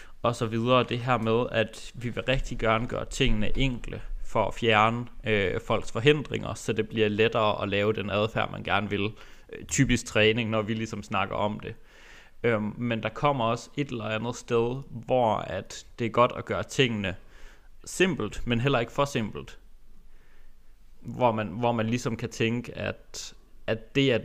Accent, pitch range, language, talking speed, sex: native, 110-125 Hz, Danish, 185 wpm, male